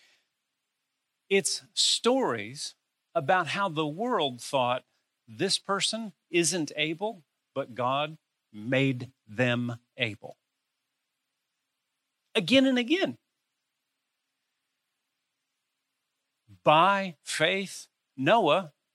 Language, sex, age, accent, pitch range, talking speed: English, male, 50-69, American, 135-210 Hz, 70 wpm